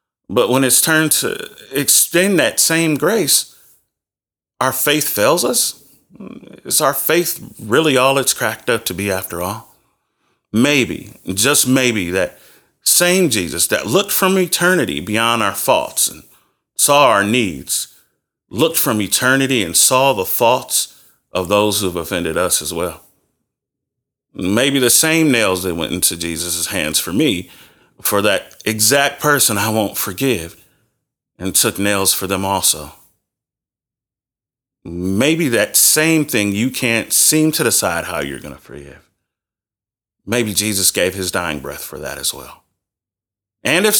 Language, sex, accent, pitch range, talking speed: English, male, American, 95-135 Hz, 145 wpm